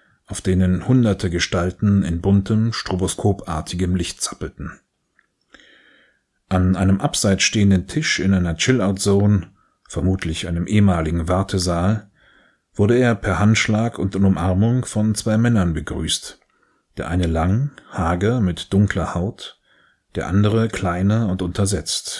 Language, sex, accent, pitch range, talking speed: German, male, German, 90-105 Hz, 115 wpm